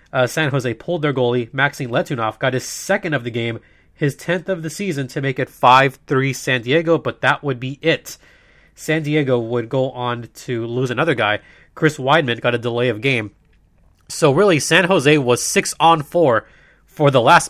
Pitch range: 125-170 Hz